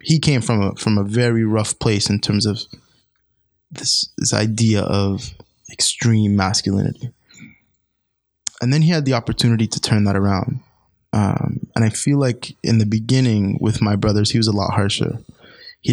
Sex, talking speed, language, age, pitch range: male, 170 wpm, English, 20-39, 105-125 Hz